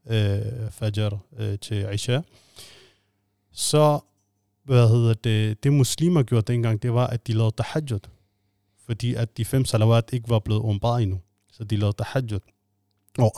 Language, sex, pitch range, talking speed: Danish, male, 110-130 Hz, 140 wpm